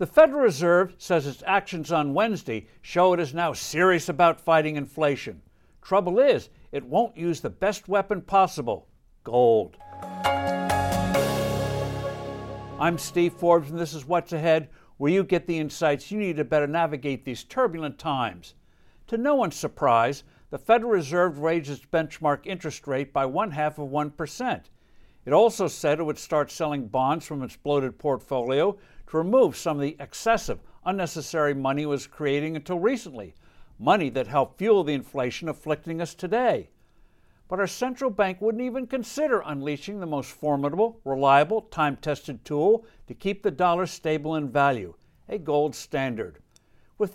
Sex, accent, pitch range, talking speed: male, American, 145-195 Hz, 155 wpm